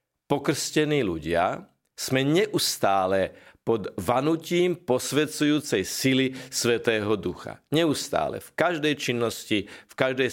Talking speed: 95 wpm